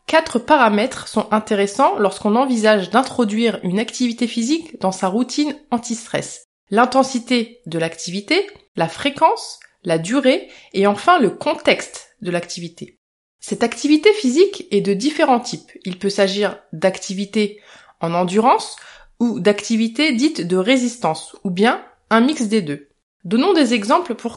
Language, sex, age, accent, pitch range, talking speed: French, female, 20-39, French, 195-285 Hz, 135 wpm